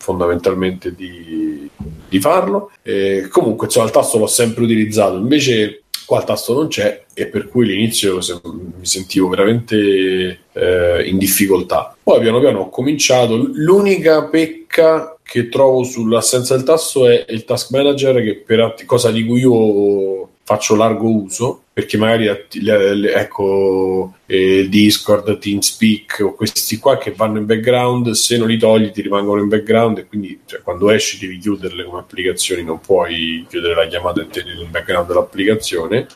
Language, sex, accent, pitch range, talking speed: Italian, male, native, 100-140 Hz, 150 wpm